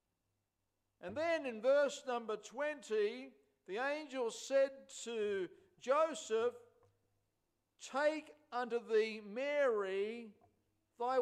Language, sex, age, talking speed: English, male, 50-69, 85 wpm